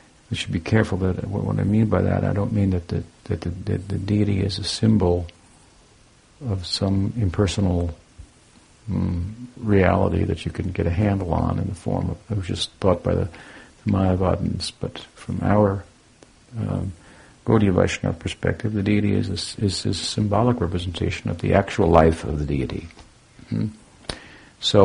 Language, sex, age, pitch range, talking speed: English, male, 50-69, 90-110 Hz, 175 wpm